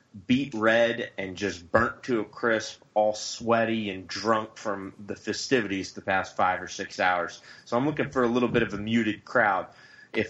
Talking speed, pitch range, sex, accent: 190 wpm, 95-110 Hz, male, American